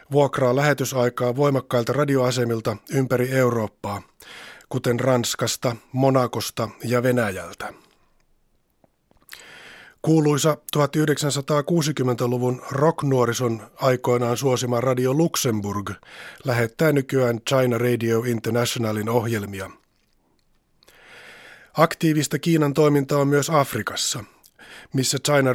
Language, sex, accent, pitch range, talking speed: Finnish, male, native, 120-145 Hz, 75 wpm